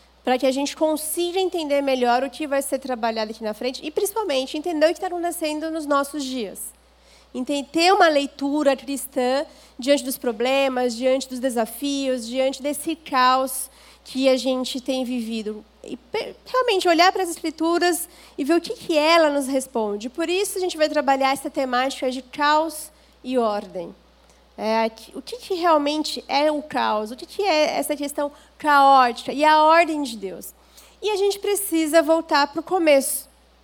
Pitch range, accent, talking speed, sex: 250-320 Hz, Brazilian, 175 wpm, female